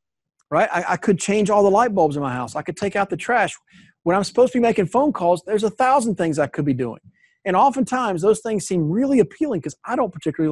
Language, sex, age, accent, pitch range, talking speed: English, male, 40-59, American, 165-215 Hz, 255 wpm